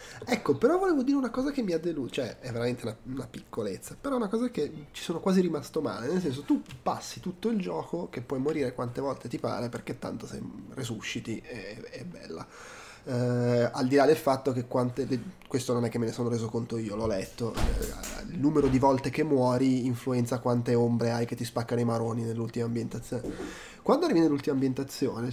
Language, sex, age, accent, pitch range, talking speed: Italian, male, 20-39, native, 120-150 Hz, 215 wpm